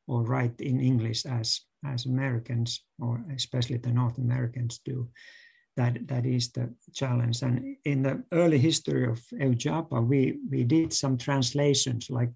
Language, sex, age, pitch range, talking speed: English, male, 60-79, 120-135 Hz, 150 wpm